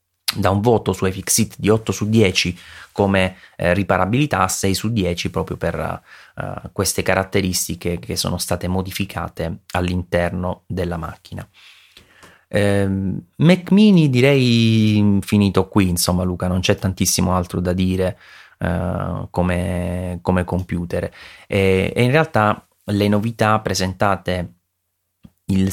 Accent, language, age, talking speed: native, Italian, 30-49, 125 wpm